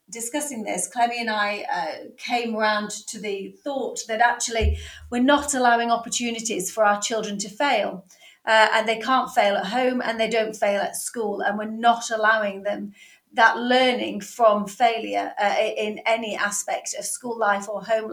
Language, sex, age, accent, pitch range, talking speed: English, female, 40-59, British, 200-230 Hz, 175 wpm